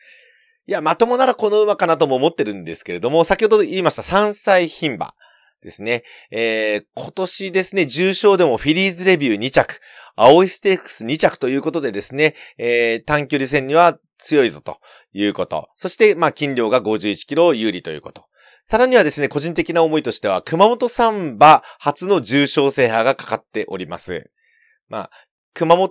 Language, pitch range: Japanese, 135-215 Hz